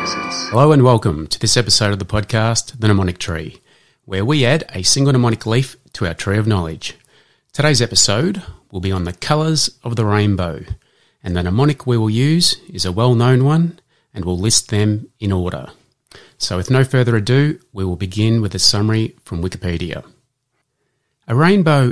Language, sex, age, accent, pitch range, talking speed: English, male, 30-49, Australian, 95-125 Hz, 180 wpm